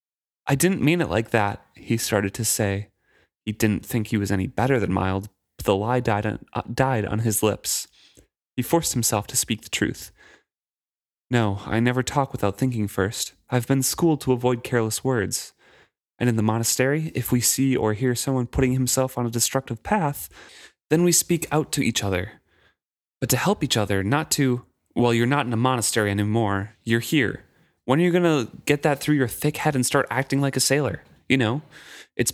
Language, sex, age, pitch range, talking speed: English, male, 20-39, 110-140 Hz, 200 wpm